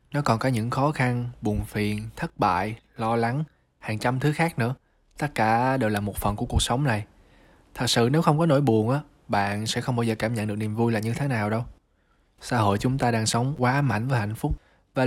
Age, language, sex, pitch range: 20-39, Vietnamese, male, 105-130 Hz